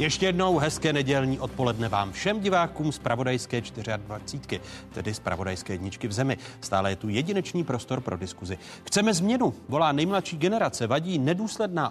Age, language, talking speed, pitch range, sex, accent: 40-59, Czech, 155 wpm, 120-160 Hz, male, native